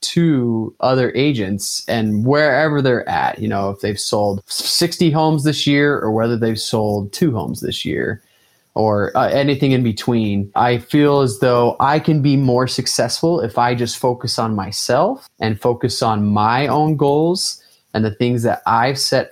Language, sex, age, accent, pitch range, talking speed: English, male, 20-39, American, 110-145 Hz, 175 wpm